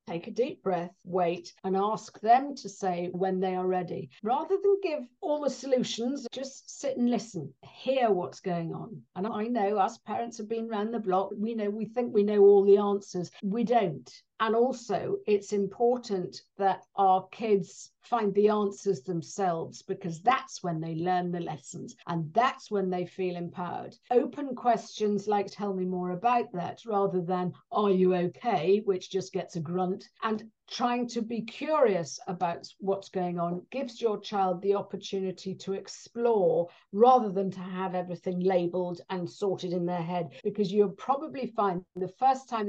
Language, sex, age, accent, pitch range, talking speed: English, female, 50-69, British, 185-230 Hz, 175 wpm